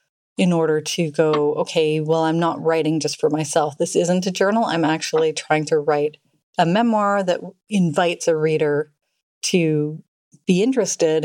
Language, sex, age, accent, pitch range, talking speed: English, female, 30-49, American, 155-190 Hz, 160 wpm